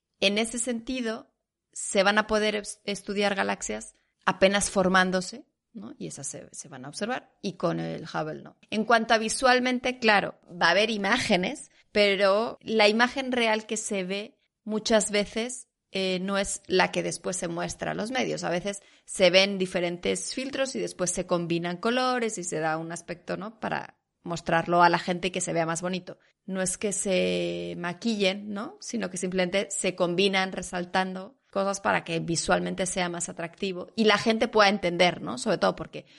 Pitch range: 180-215 Hz